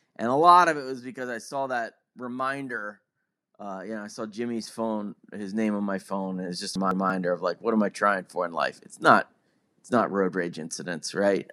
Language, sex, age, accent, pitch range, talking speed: English, male, 20-39, American, 110-170 Hz, 230 wpm